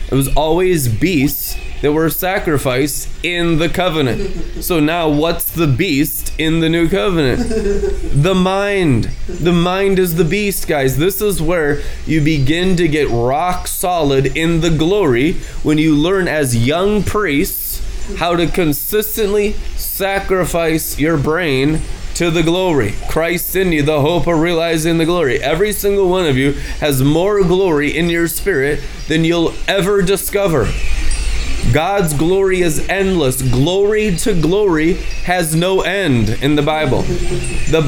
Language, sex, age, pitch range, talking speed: English, male, 20-39, 155-195 Hz, 145 wpm